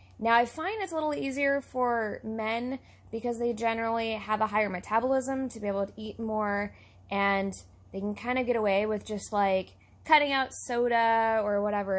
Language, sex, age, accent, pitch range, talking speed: English, female, 20-39, American, 195-245 Hz, 185 wpm